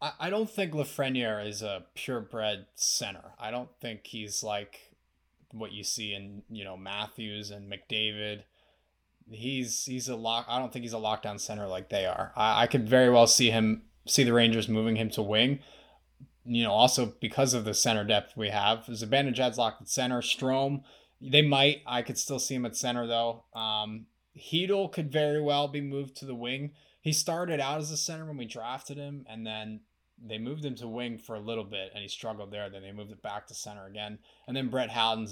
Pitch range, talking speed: 105-130 Hz, 205 wpm